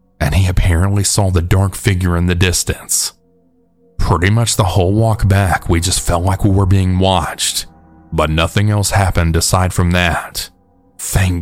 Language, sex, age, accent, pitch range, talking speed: English, male, 30-49, American, 85-100 Hz, 170 wpm